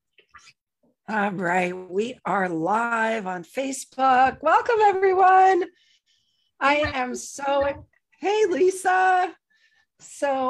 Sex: female